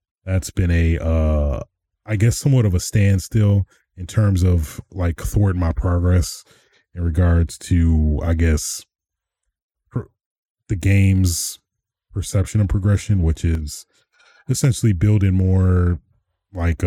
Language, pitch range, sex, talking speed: English, 80-100 Hz, male, 120 wpm